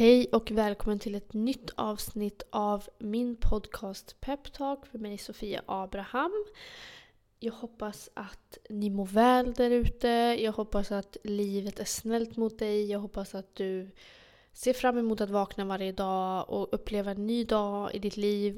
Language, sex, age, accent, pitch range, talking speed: Swedish, female, 20-39, native, 200-225 Hz, 160 wpm